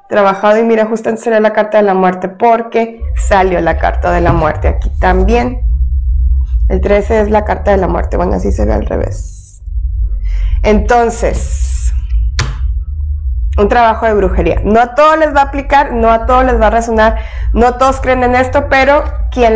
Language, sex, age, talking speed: Spanish, female, 20-39, 180 wpm